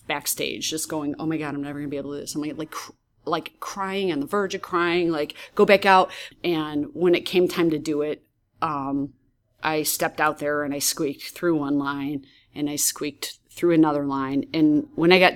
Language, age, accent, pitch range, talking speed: English, 30-49, American, 145-175 Hz, 225 wpm